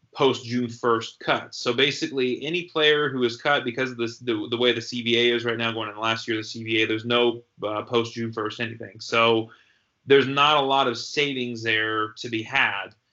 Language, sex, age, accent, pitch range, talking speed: English, male, 30-49, American, 115-125 Hz, 210 wpm